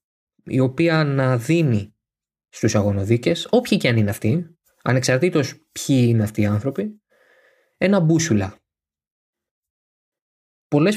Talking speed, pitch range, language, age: 110 wpm, 110-155 Hz, Greek, 20-39